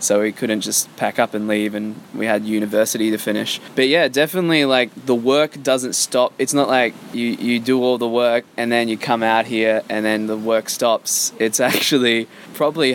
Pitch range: 110-125 Hz